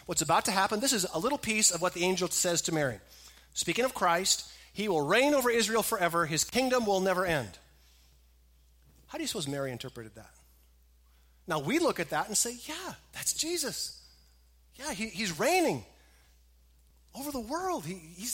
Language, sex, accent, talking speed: English, male, American, 175 wpm